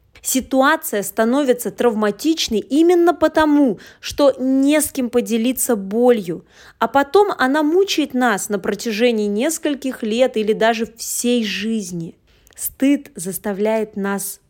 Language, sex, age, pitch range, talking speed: Russian, female, 20-39, 200-275 Hz, 110 wpm